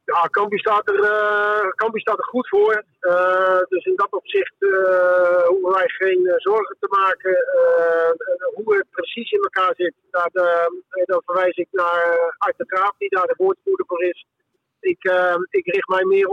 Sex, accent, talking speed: male, Dutch, 175 wpm